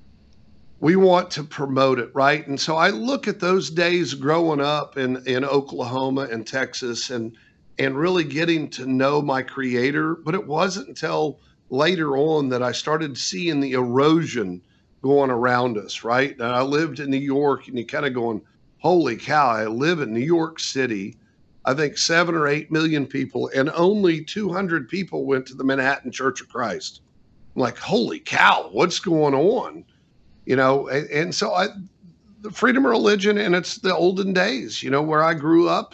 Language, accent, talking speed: English, American, 180 wpm